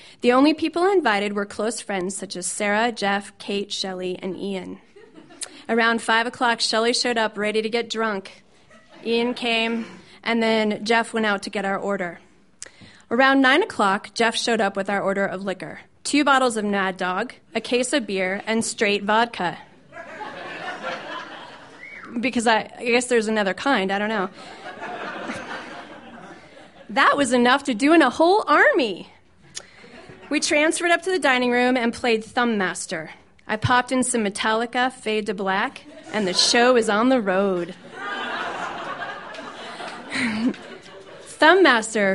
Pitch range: 200-255 Hz